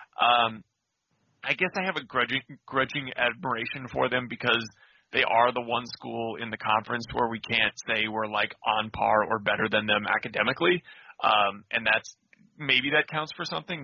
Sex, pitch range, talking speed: male, 110-145 Hz, 180 wpm